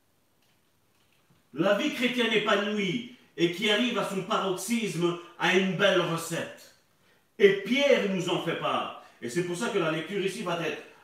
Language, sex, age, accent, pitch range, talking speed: French, male, 40-59, French, 170-220 Hz, 165 wpm